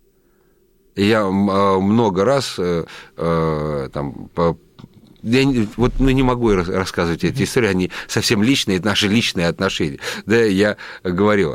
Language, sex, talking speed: Russian, male, 120 wpm